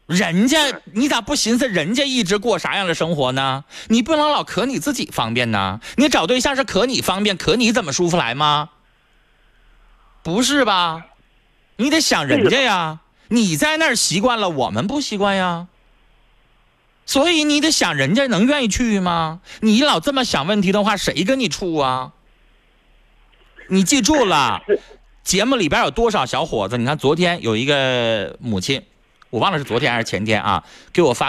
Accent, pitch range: native, 160-240 Hz